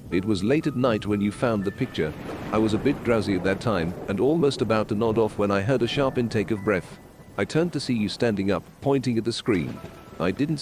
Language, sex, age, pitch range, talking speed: English, male, 50-69, 100-130 Hz, 255 wpm